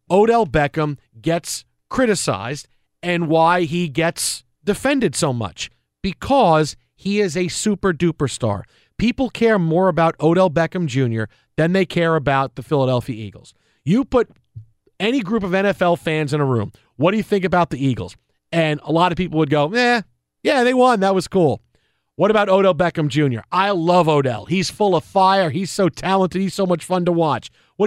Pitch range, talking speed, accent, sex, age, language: 150-195 Hz, 180 wpm, American, male, 40-59, English